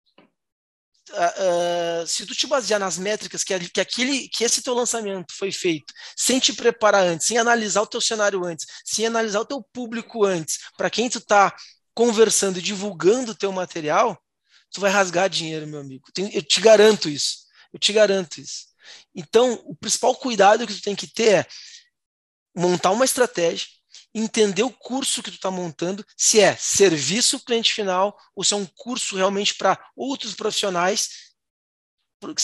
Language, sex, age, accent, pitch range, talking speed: Portuguese, male, 20-39, Brazilian, 180-225 Hz, 170 wpm